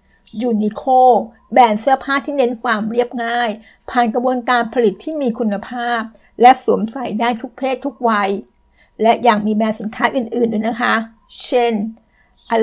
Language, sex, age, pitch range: Thai, female, 60-79, 215-255 Hz